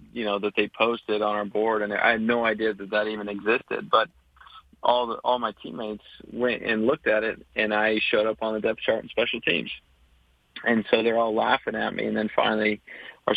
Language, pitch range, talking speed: English, 105-110 Hz, 225 wpm